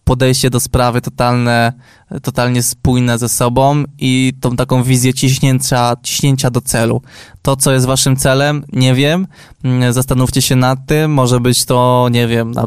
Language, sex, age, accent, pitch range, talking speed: Polish, male, 20-39, native, 120-140 Hz, 155 wpm